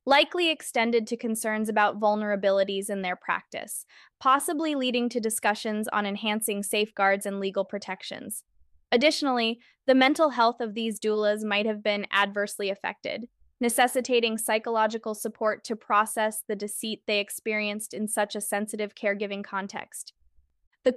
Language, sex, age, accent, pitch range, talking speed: English, female, 10-29, American, 205-240 Hz, 135 wpm